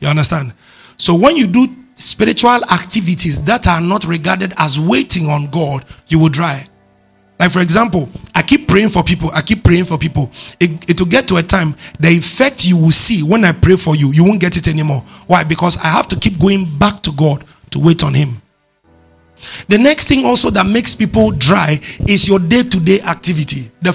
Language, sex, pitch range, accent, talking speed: English, male, 150-195 Hz, Nigerian, 205 wpm